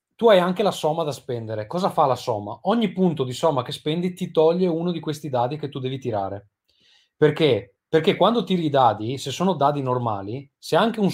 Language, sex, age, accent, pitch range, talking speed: Italian, male, 30-49, native, 115-150 Hz, 215 wpm